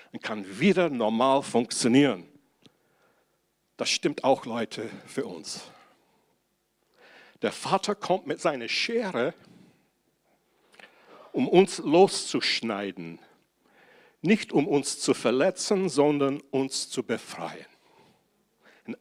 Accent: German